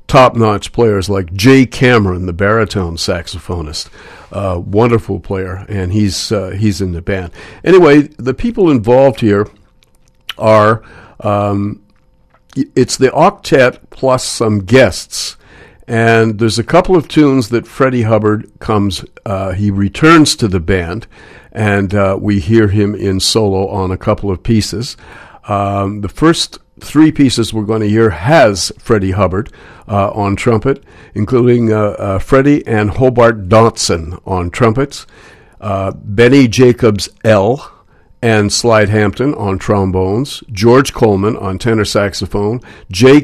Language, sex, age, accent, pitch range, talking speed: English, male, 50-69, American, 100-120 Hz, 135 wpm